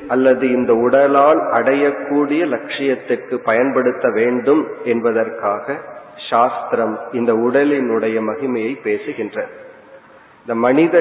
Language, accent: Tamil, native